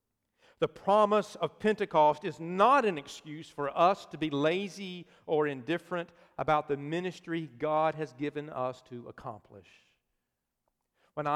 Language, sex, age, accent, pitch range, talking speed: English, male, 50-69, American, 145-185 Hz, 130 wpm